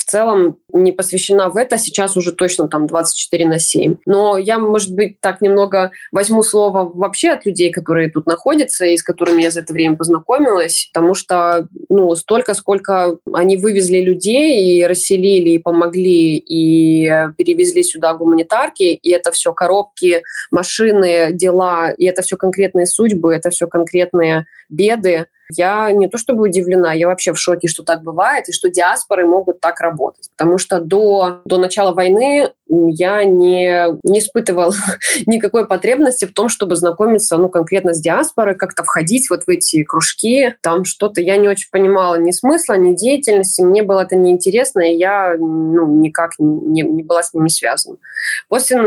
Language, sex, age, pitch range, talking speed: Russian, female, 20-39, 170-205 Hz, 165 wpm